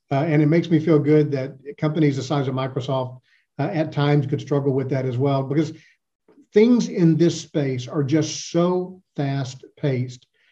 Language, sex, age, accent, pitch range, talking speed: English, male, 50-69, American, 135-155 Hz, 175 wpm